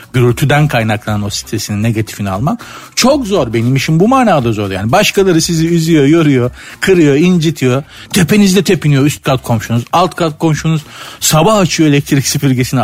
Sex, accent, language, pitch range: male, native, Turkish, 115-165 Hz